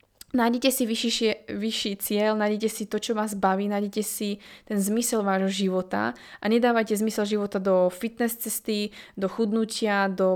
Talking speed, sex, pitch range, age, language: 155 wpm, female, 190-220 Hz, 20-39, Slovak